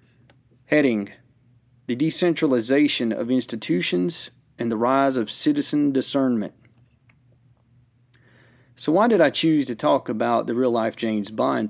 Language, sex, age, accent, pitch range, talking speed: English, male, 40-59, American, 115-130 Hz, 120 wpm